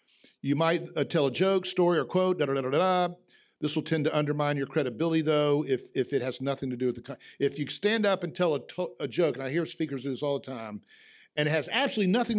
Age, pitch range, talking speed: 50-69, 130-170 Hz, 270 wpm